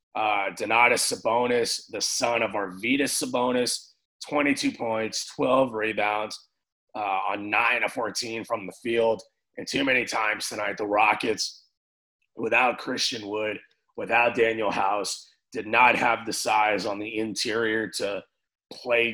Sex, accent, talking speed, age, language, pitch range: male, American, 135 wpm, 30-49, English, 110-120 Hz